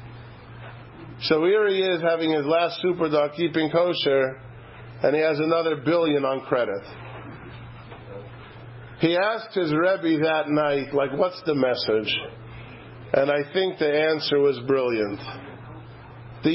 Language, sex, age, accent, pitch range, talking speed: English, male, 50-69, American, 130-190 Hz, 125 wpm